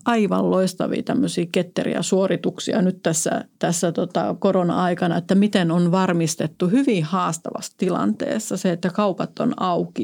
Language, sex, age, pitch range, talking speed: Finnish, female, 30-49, 175-205 Hz, 130 wpm